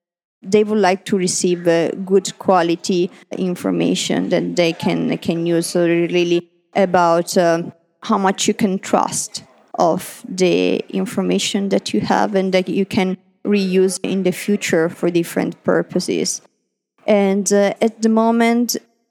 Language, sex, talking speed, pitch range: English, female, 140 wpm, 180-210 Hz